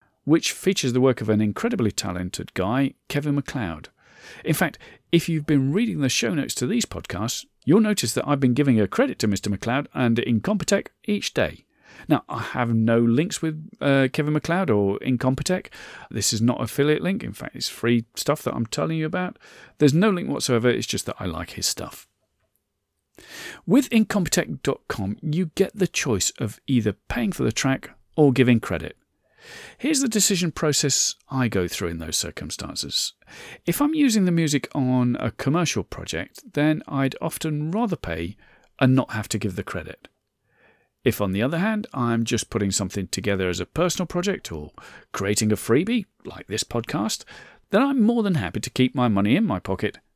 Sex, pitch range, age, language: male, 105-170 Hz, 40-59, English